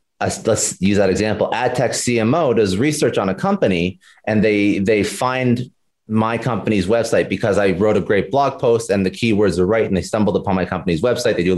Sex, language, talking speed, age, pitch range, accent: male, English, 220 wpm, 30-49, 95-120 Hz, American